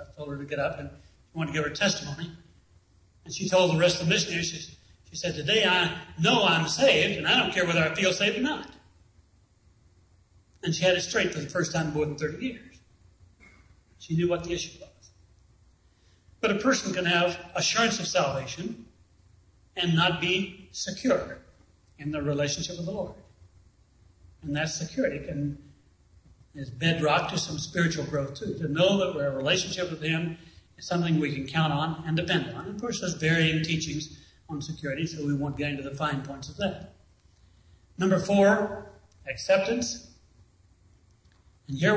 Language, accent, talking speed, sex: English, American, 185 wpm, male